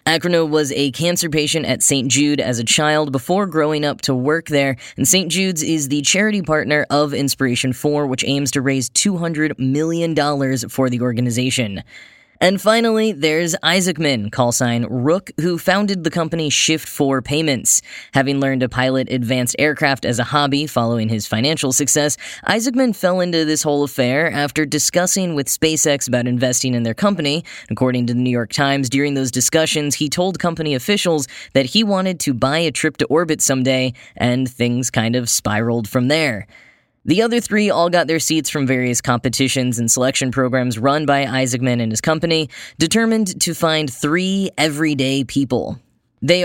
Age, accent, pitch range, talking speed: 10-29, American, 130-160 Hz, 170 wpm